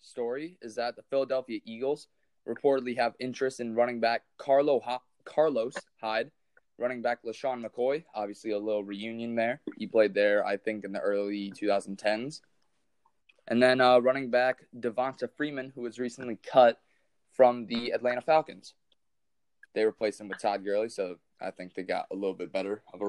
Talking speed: 165 wpm